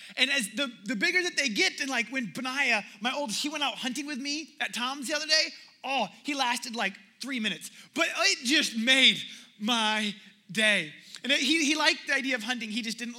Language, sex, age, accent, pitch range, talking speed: English, male, 20-39, American, 220-285 Hz, 220 wpm